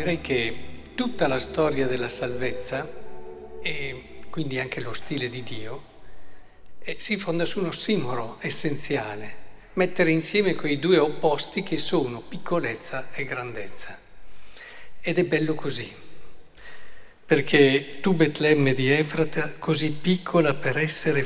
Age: 50-69